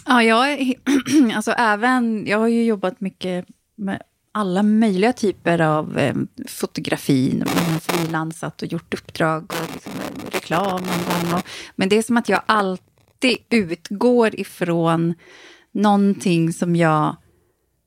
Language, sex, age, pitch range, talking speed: Swedish, female, 30-49, 170-240 Hz, 130 wpm